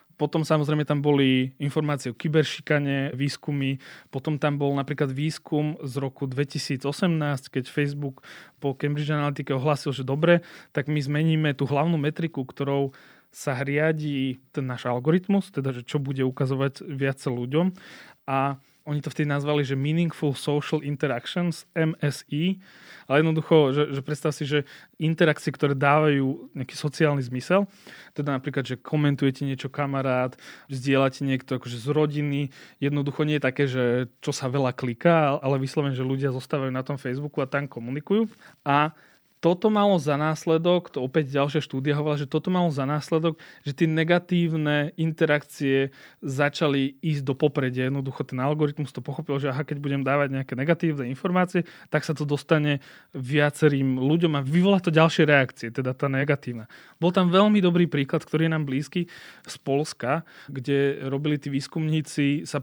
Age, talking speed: 20-39, 155 wpm